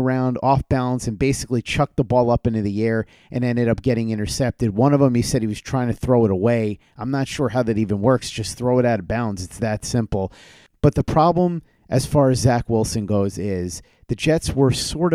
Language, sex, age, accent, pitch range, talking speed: English, male, 30-49, American, 105-130 Hz, 235 wpm